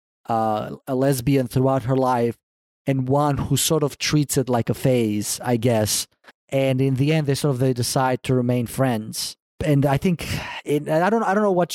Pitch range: 130-155 Hz